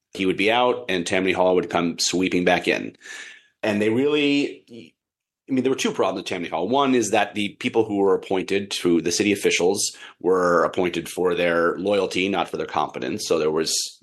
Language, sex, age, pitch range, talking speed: English, male, 30-49, 90-115 Hz, 215 wpm